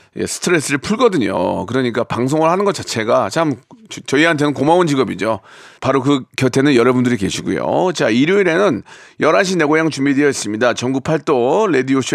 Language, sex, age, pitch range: Korean, male, 40-59, 130-185 Hz